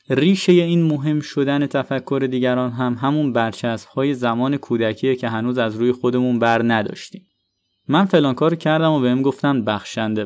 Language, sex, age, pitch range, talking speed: Persian, male, 20-39, 120-165 Hz, 150 wpm